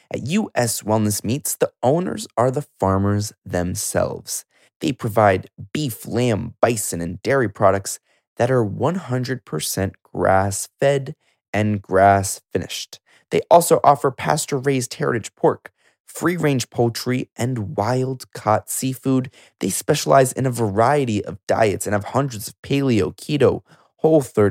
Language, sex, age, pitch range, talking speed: English, male, 20-39, 100-130 Hz, 120 wpm